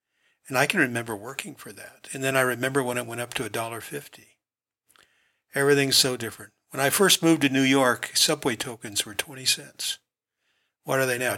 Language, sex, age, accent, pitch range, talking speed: English, male, 60-79, American, 125-150 Hz, 200 wpm